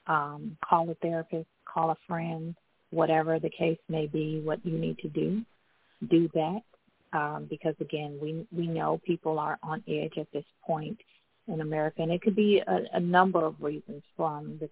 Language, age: English, 40-59